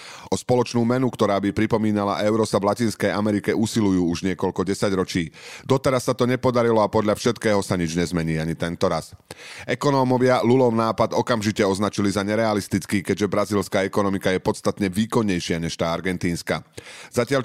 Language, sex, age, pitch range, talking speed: Slovak, male, 30-49, 95-120 Hz, 160 wpm